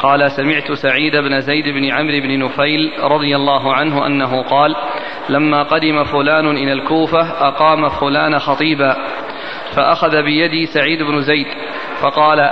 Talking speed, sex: 135 wpm, male